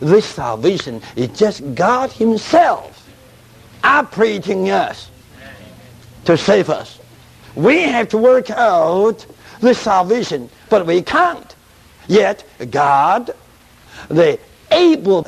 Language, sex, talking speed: English, male, 100 wpm